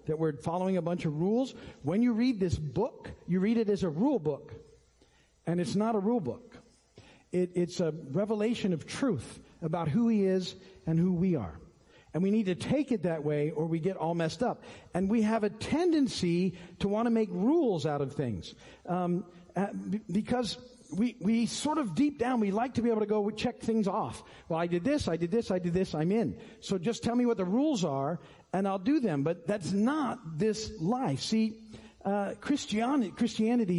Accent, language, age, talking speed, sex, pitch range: American, English, 50-69, 205 wpm, male, 165-230 Hz